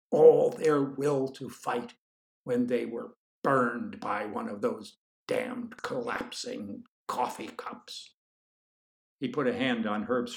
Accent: American